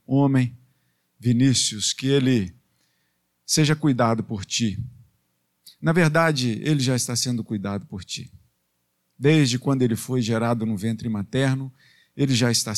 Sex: male